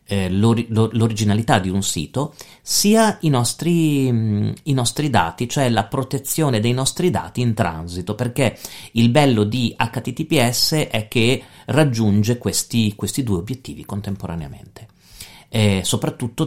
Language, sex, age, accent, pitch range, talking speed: Italian, male, 40-59, native, 100-125 Hz, 125 wpm